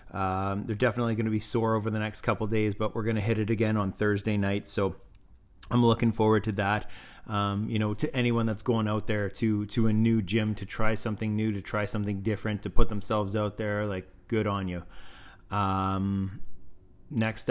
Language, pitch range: English, 100-115 Hz